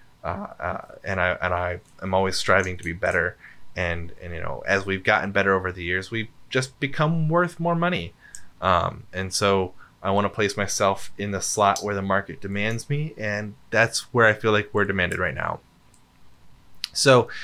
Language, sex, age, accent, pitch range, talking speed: English, male, 20-39, American, 95-125 Hz, 195 wpm